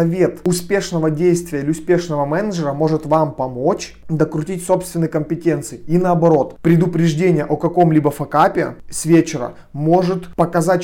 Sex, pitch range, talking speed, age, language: male, 150-180 Hz, 120 wpm, 30-49, Russian